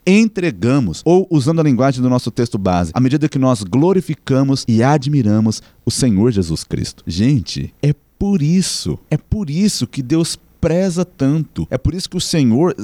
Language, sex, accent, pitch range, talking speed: Portuguese, male, Brazilian, 130-175 Hz, 175 wpm